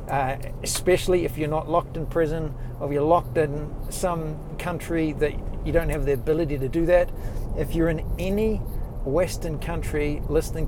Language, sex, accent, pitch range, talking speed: English, male, Australian, 125-155 Hz, 170 wpm